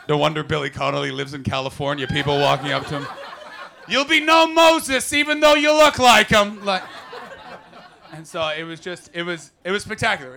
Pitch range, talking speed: 140-200 Hz, 190 wpm